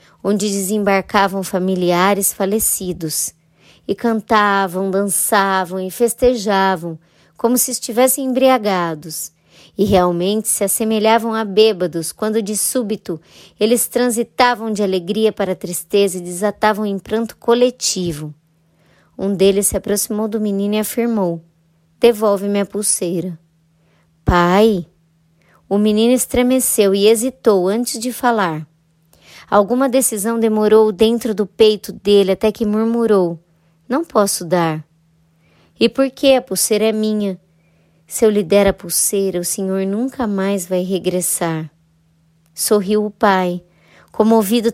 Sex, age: male, 20-39